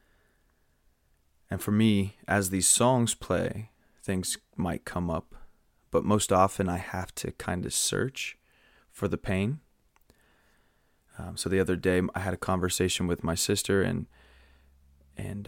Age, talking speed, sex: 20-39, 145 wpm, male